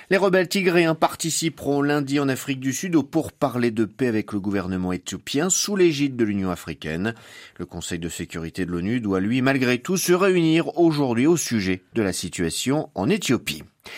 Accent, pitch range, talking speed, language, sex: French, 105-160 Hz, 180 wpm, French, male